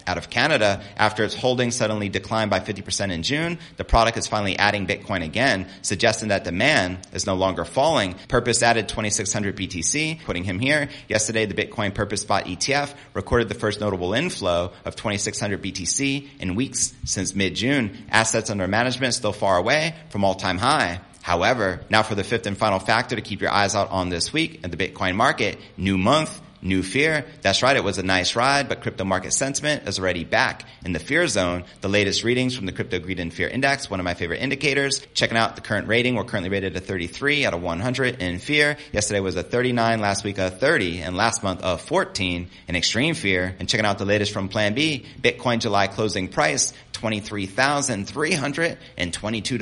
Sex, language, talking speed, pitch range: male, English, 195 wpm, 95-120 Hz